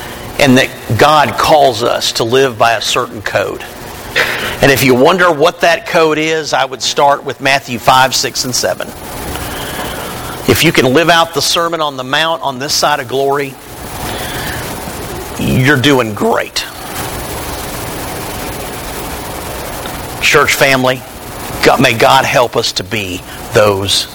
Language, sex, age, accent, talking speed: English, male, 50-69, American, 135 wpm